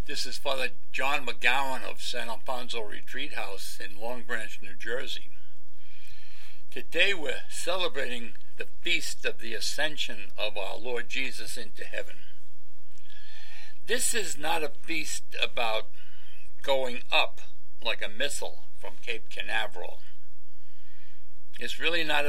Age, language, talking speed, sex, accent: 60-79, English, 125 wpm, male, American